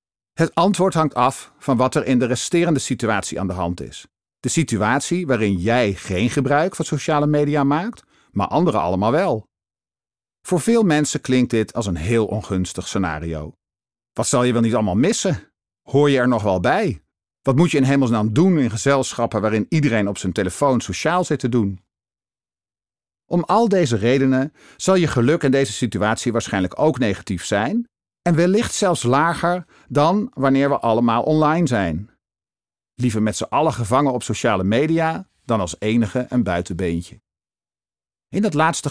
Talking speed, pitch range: 170 wpm, 105-150 Hz